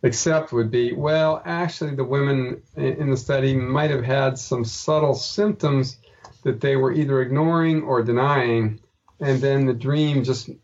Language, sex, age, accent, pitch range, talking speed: English, male, 50-69, American, 120-150 Hz, 160 wpm